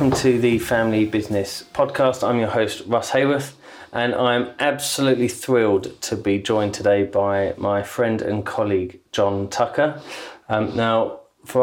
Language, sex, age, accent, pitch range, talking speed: English, male, 30-49, British, 105-125 Hz, 145 wpm